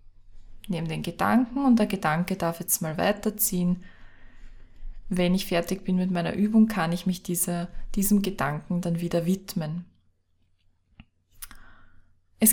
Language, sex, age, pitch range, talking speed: German, female, 20-39, 175-205 Hz, 130 wpm